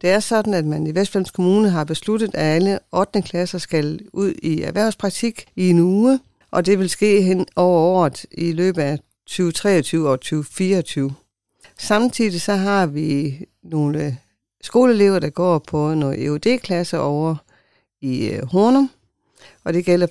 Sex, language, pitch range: female, Danish, 155-195 Hz